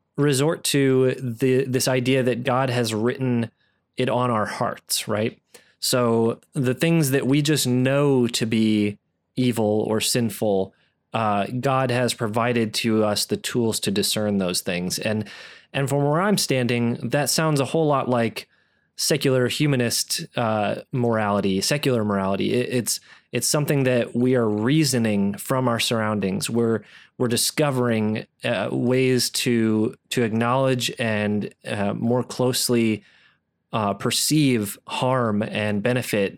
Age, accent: 20-39, American